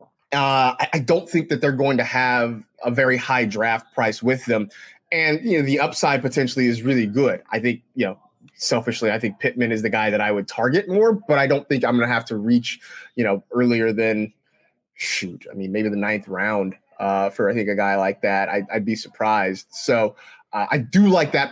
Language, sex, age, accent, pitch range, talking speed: English, male, 20-39, American, 120-155 Hz, 220 wpm